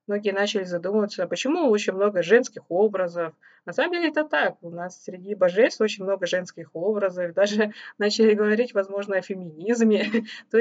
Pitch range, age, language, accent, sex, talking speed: 180-230 Hz, 20-39, Russian, native, female, 160 wpm